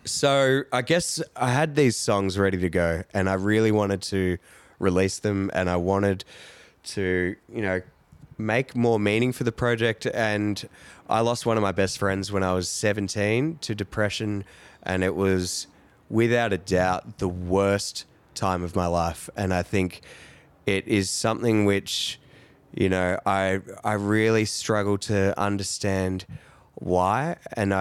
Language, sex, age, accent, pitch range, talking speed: English, male, 20-39, Australian, 95-110 Hz, 155 wpm